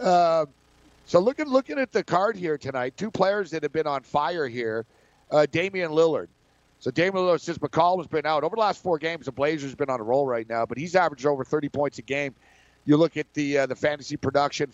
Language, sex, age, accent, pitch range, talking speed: English, male, 50-69, American, 140-180 Hz, 240 wpm